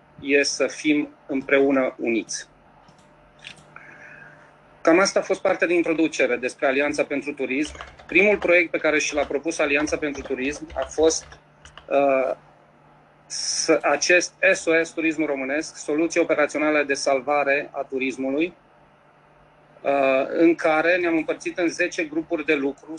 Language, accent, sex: Romanian, native, male